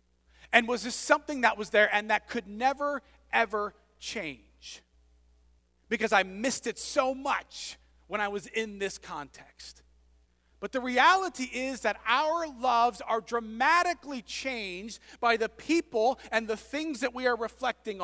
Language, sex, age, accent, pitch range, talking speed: English, male, 40-59, American, 185-250 Hz, 150 wpm